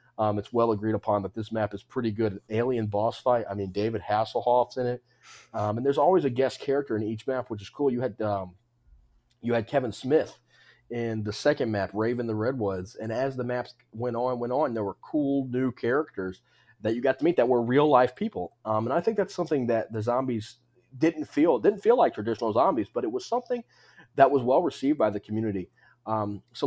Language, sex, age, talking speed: English, male, 30-49, 225 wpm